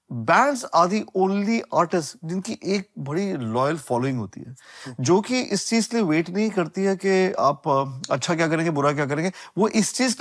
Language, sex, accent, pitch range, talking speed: Hindi, male, native, 140-190 Hz, 120 wpm